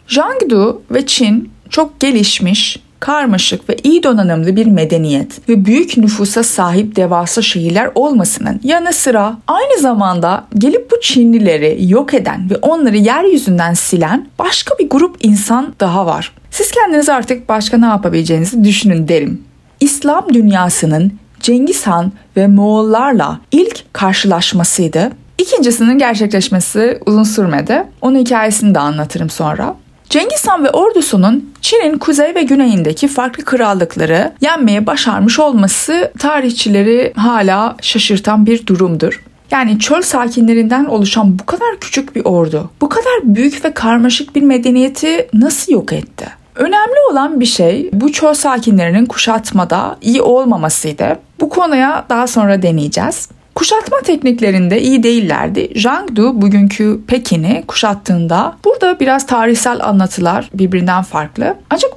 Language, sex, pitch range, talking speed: Turkish, female, 200-270 Hz, 125 wpm